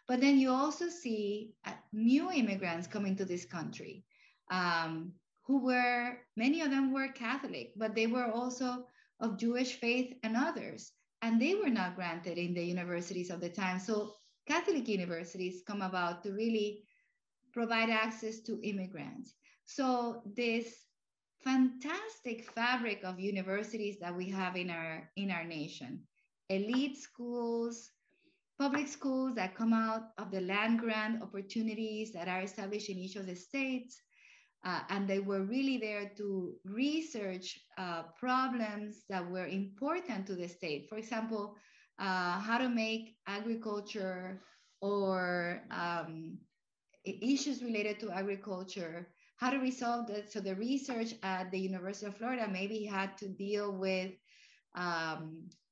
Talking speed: 140 wpm